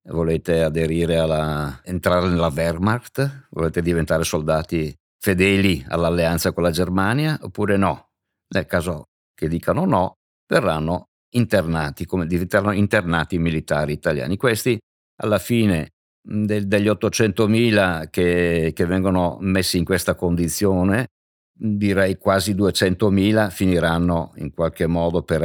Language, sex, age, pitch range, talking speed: Italian, male, 50-69, 80-100 Hz, 115 wpm